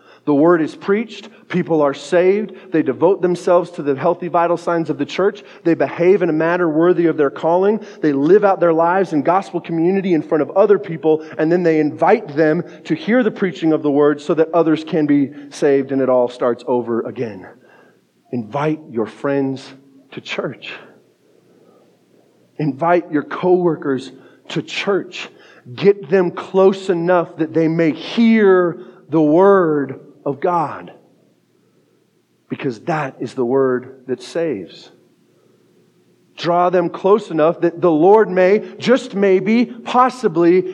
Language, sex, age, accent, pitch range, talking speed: English, male, 30-49, American, 130-180 Hz, 155 wpm